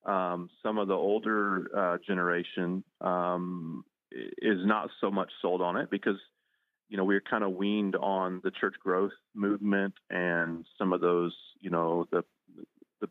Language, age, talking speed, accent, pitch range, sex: English, 30-49, 160 wpm, American, 85-95 Hz, male